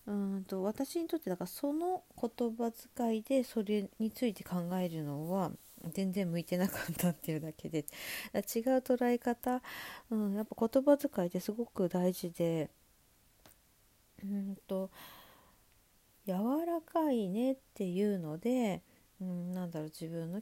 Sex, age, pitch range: female, 40-59, 175-240 Hz